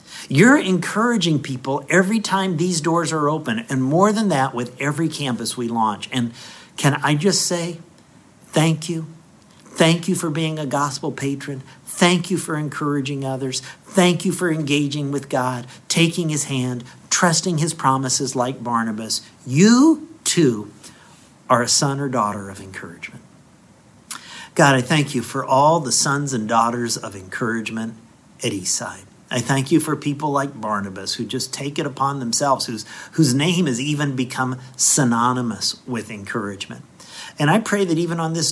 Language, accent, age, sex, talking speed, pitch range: English, American, 50-69, male, 160 wpm, 120-165 Hz